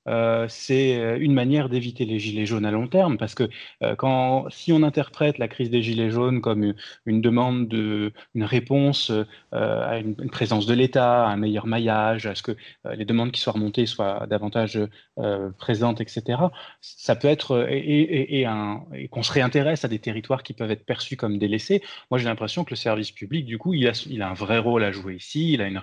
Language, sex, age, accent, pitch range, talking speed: French, male, 20-39, French, 110-140 Hz, 225 wpm